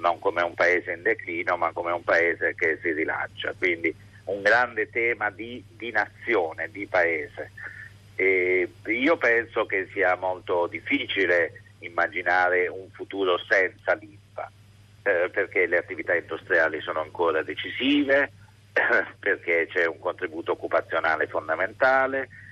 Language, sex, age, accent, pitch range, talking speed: Italian, male, 50-69, native, 95-135 Hz, 130 wpm